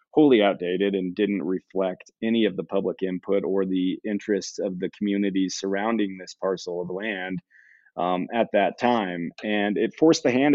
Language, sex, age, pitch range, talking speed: English, male, 30-49, 95-110 Hz, 170 wpm